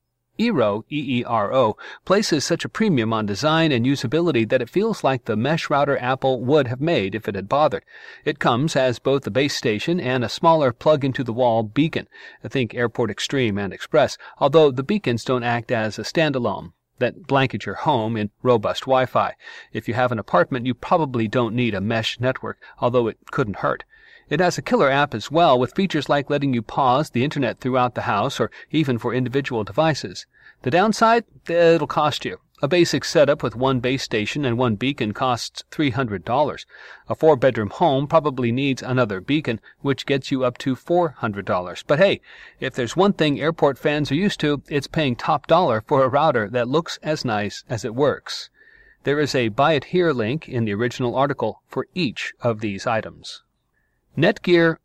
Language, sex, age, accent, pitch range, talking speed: English, male, 40-59, American, 120-155 Hz, 185 wpm